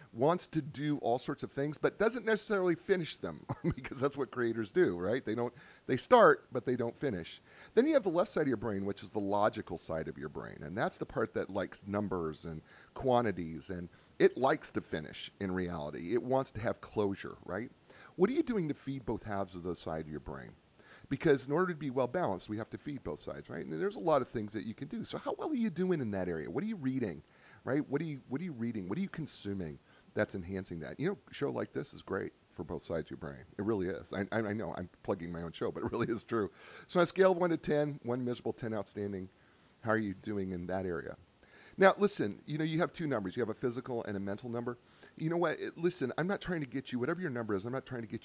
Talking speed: 270 wpm